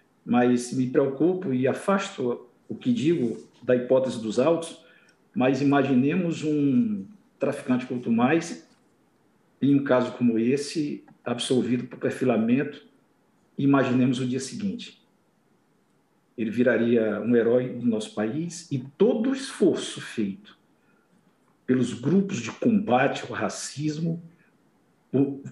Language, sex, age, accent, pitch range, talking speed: Portuguese, male, 50-69, Brazilian, 120-170 Hz, 120 wpm